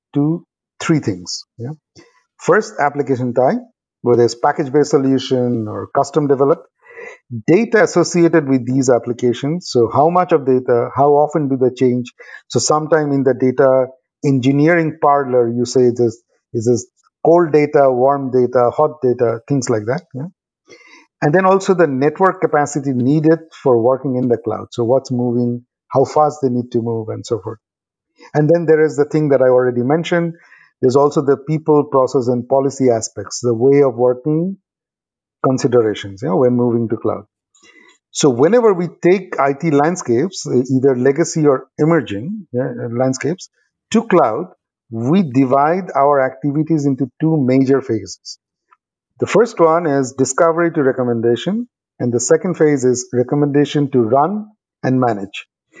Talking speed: 150 wpm